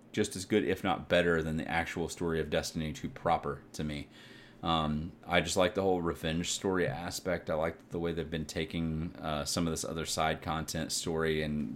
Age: 30-49